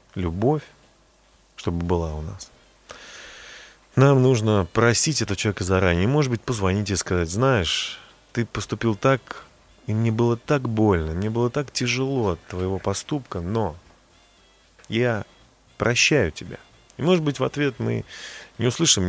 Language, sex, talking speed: Russian, male, 140 wpm